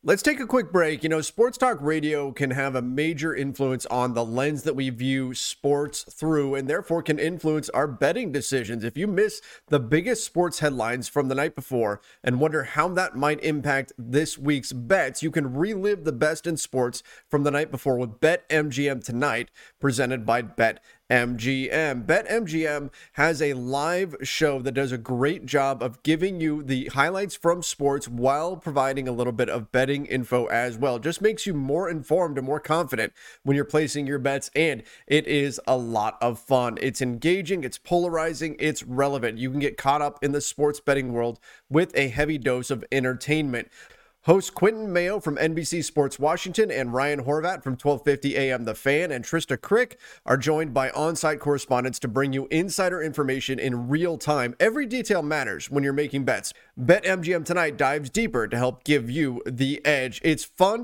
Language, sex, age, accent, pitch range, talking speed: English, male, 30-49, American, 130-160 Hz, 185 wpm